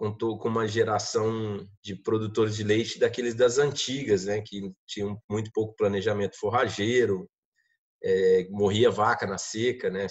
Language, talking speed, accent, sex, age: Portuguese, 140 wpm, Brazilian, male, 20-39